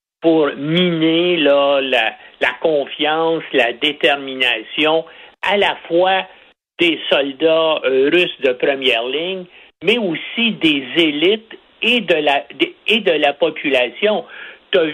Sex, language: male, French